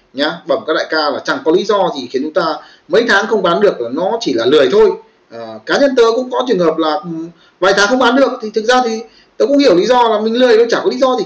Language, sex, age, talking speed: Vietnamese, male, 30-49, 305 wpm